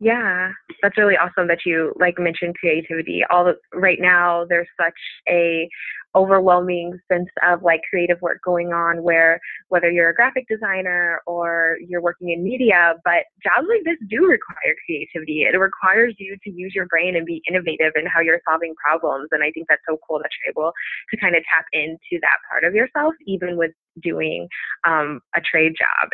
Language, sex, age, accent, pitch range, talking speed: English, female, 20-39, American, 170-195 Hz, 190 wpm